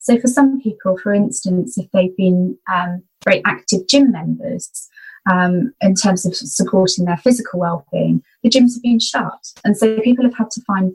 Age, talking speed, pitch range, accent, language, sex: 20-39, 185 wpm, 185-225 Hz, British, English, female